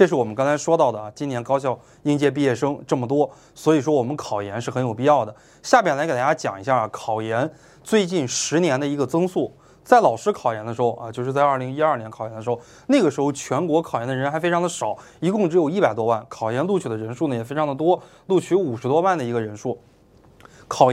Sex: male